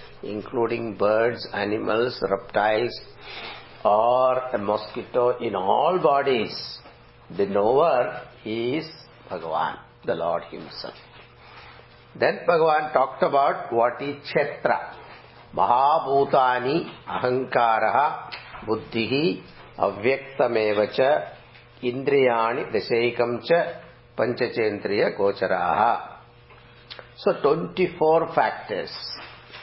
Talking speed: 75 wpm